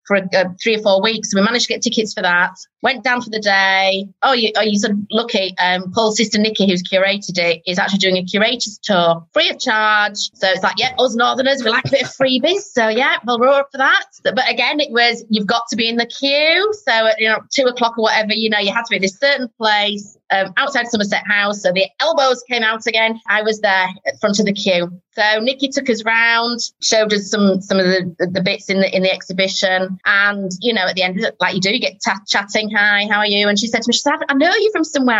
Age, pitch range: 30-49, 195-240 Hz